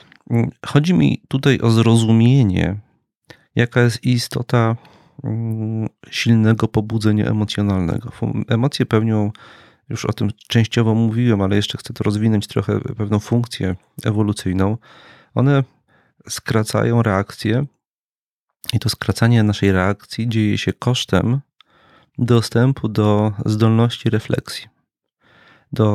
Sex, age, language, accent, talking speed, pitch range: male, 40-59, Polish, native, 100 wpm, 110-120 Hz